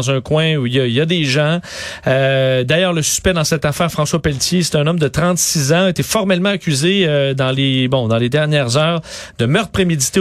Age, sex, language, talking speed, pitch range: 40-59, male, French, 235 wpm, 140-180 Hz